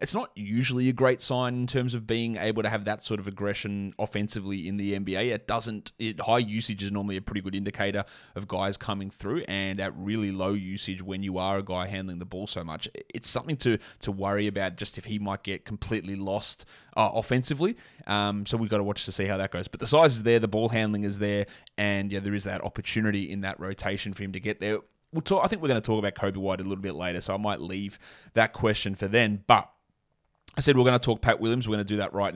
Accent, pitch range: Australian, 100-115 Hz